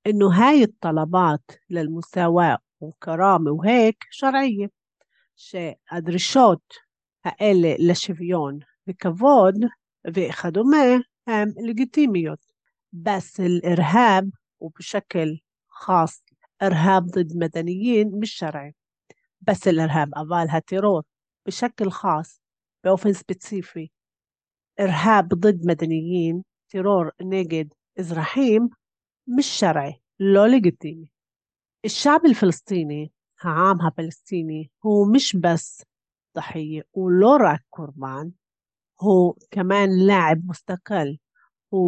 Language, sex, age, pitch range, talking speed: Hebrew, female, 50-69, 160-205 Hz, 80 wpm